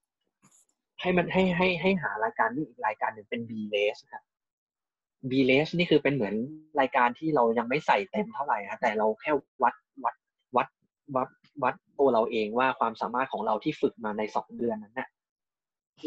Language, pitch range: Thai, 115-155 Hz